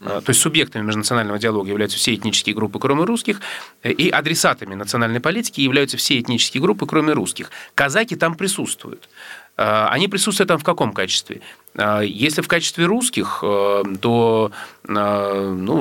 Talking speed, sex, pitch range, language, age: 135 wpm, male, 105-140 Hz, Russian, 30-49